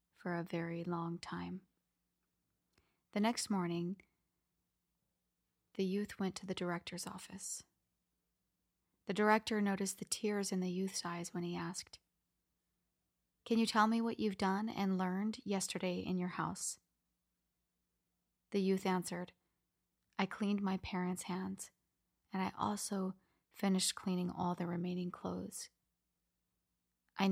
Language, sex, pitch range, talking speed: English, female, 165-195 Hz, 125 wpm